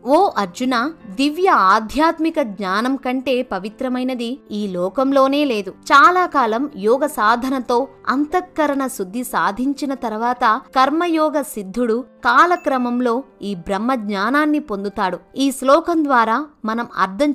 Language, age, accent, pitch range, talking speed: Telugu, 20-39, native, 230-290 Hz, 105 wpm